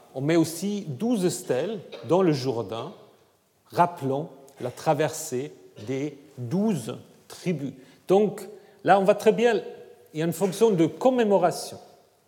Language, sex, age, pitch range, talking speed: French, male, 40-59, 140-220 Hz, 130 wpm